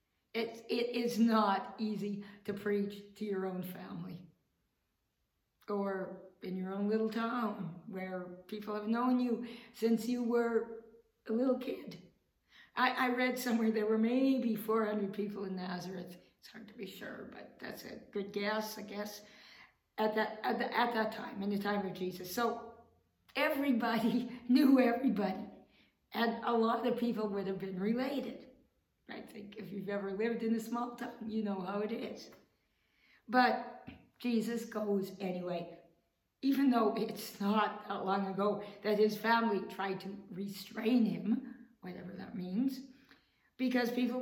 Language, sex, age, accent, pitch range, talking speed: English, female, 50-69, American, 205-240 Hz, 155 wpm